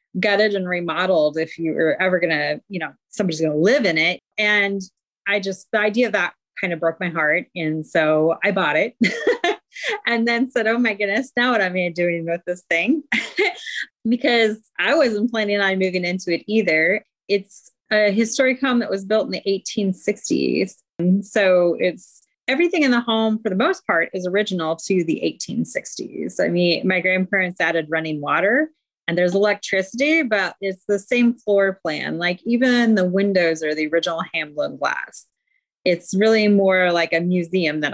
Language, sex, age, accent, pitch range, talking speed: English, female, 30-49, American, 180-235 Hz, 180 wpm